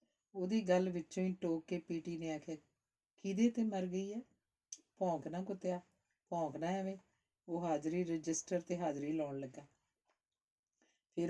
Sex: female